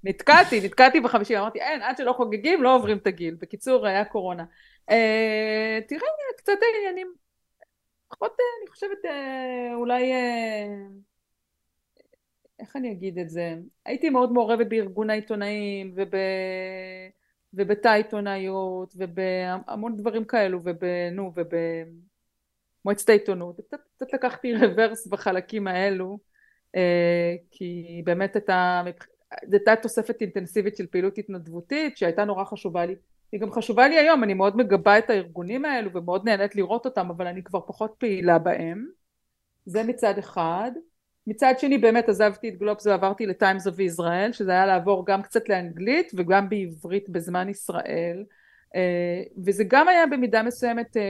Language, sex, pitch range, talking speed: Hebrew, female, 185-235 Hz, 135 wpm